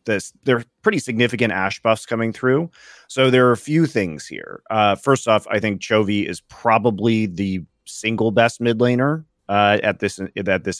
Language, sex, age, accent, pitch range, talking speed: English, male, 30-49, American, 100-125 Hz, 190 wpm